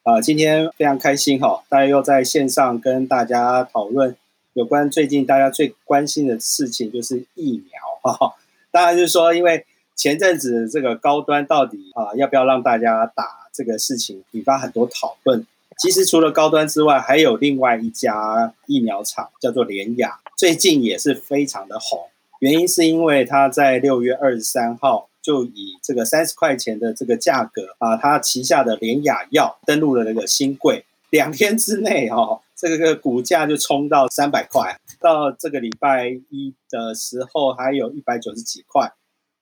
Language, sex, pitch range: Chinese, male, 125-170 Hz